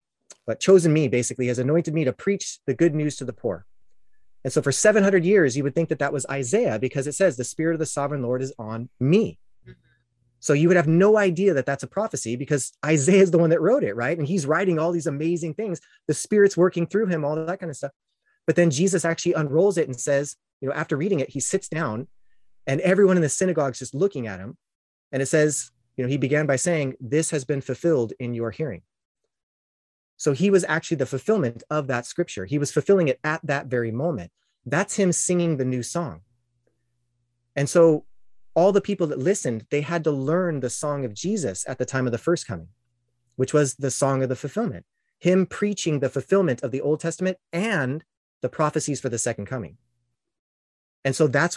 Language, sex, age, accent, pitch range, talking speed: English, male, 30-49, American, 125-170 Hz, 220 wpm